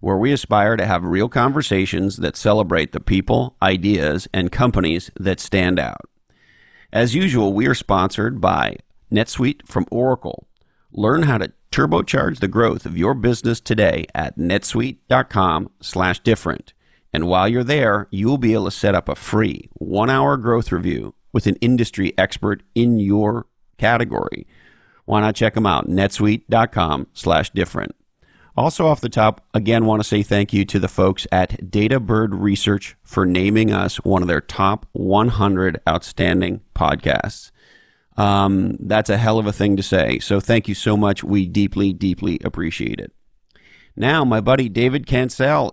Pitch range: 95-115 Hz